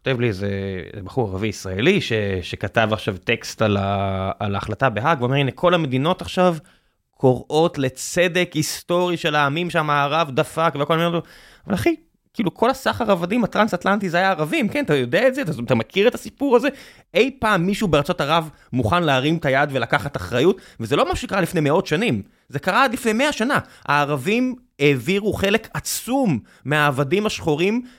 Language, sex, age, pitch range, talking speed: Hebrew, male, 20-39, 135-215 Hz, 175 wpm